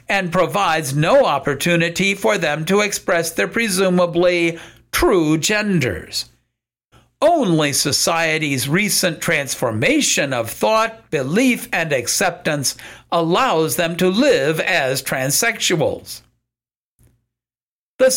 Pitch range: 140-210 Hz